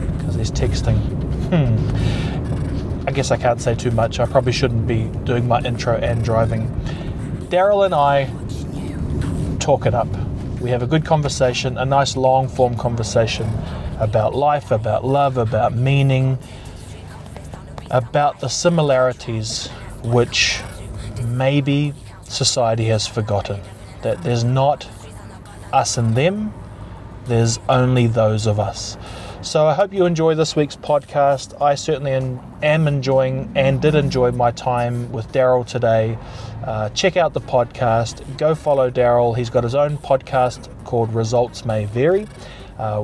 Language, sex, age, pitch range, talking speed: English, male, 30-49, 110-140 Hz, 140 wpm